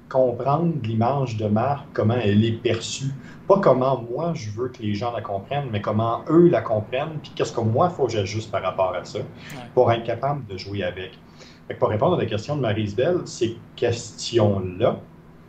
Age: 40-59